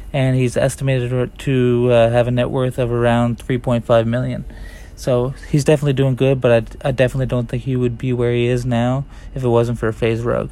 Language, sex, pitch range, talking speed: English, male, 115-130 Hz, 215 wpm